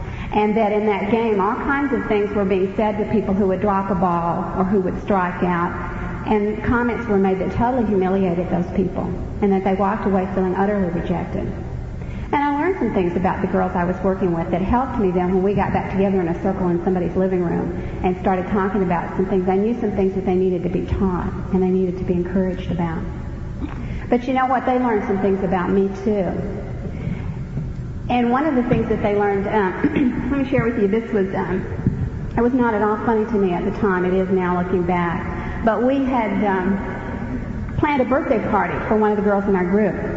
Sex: female